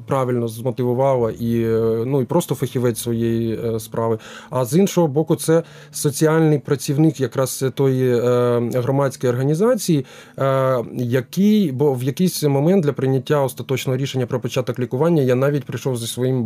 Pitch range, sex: 115-145 Hz, male